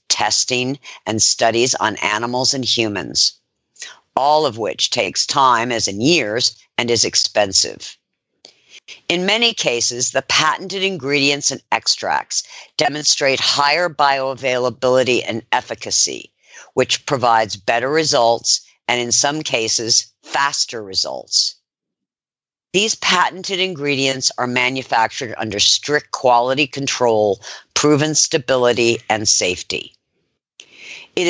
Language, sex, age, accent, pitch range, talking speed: English, female, 50-69, American, 115-145 Hz, 105 wpm